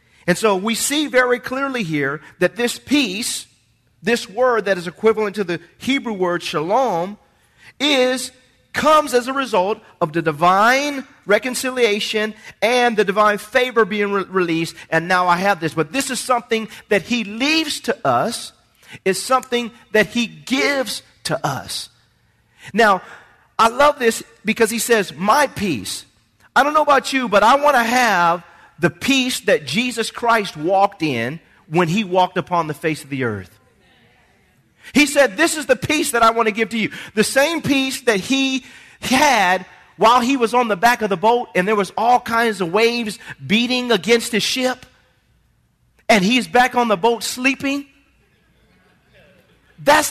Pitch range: 185-255 Hz